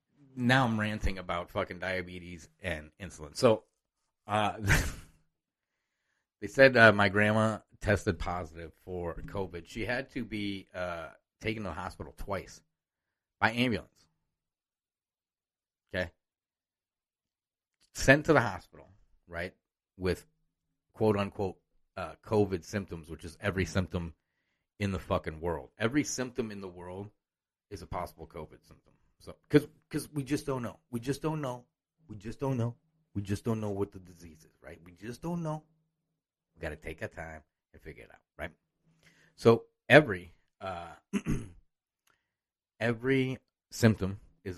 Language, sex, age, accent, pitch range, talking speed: English, male, 30-49, American, 85-115 Hz, 140 wpm